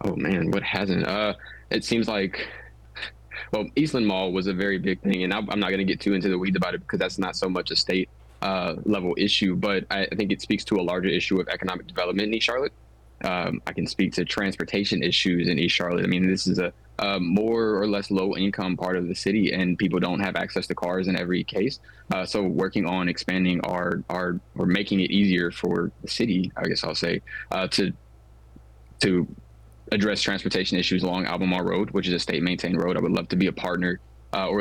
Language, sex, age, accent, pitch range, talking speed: English, male, 20-39, American, 90-95 Hz, 225 wpm